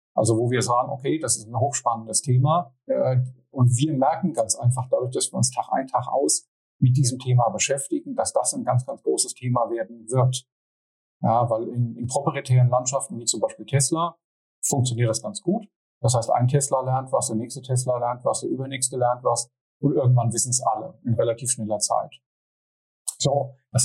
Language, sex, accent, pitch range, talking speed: German, male, German, 115-135 Hz, 190 wpm